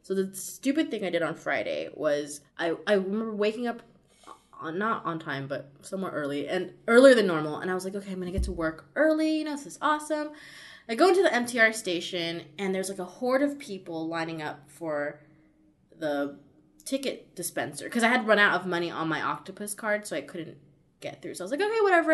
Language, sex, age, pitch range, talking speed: English, female, 20-39, 165-220 Hz, 225 wpm